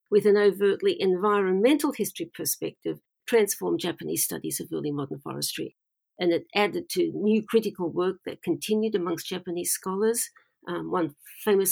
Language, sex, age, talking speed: English, female, 50-69, 145 wpm